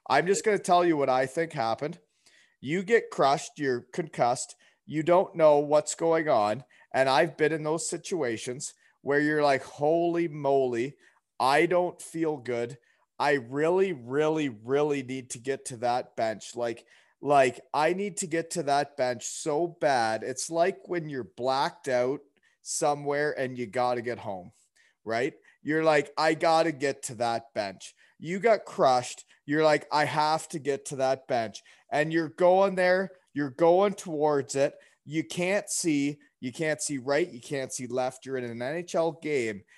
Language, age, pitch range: English, 30-49, 130-165 Hz